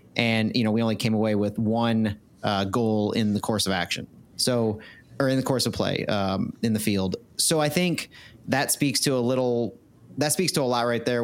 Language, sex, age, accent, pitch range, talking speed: English, male, 30-49, American, 110-130 Hz, 225 wpm